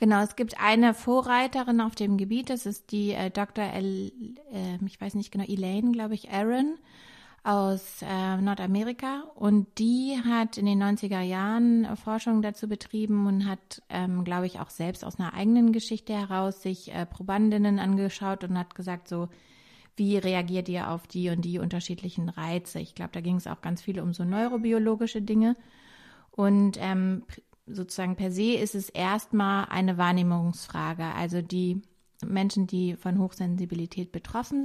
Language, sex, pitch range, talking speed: German, female, 180-220 Hz, 160 wpm